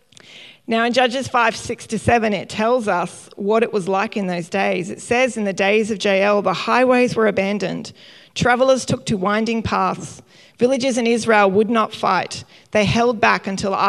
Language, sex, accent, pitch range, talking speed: English, female, Australian, 190-235 Hz, 185 wpm